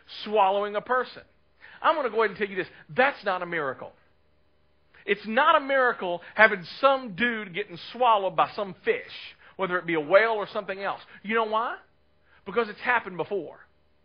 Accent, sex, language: American, male, English